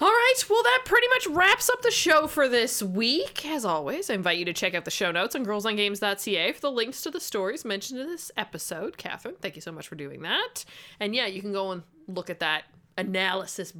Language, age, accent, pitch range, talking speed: English, 20-39, American, 175-275 Hz, 235 wpm